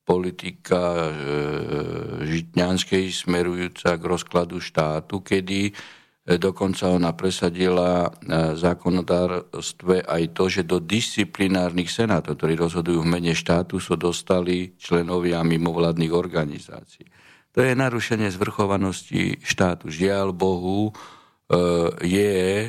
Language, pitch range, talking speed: Slovak, 85-100 Hz, 95 wpm